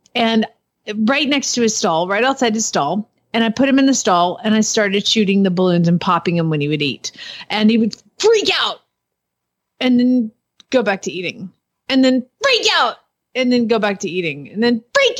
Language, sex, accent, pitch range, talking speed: English, female, American, 215-280 Hz, 215 wpm